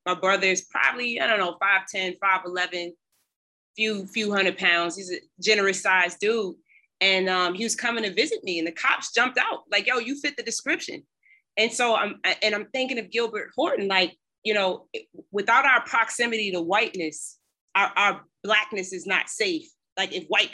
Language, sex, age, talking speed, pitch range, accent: English, female, 30-49, 180 wpm, 195-275 Hz, American